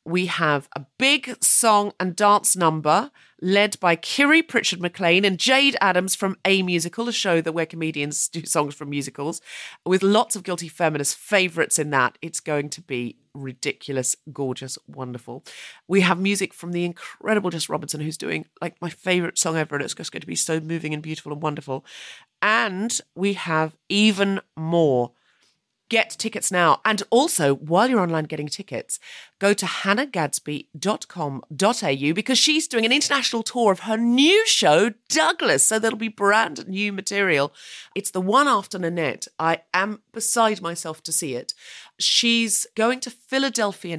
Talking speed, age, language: 165 wpm, 40-59, English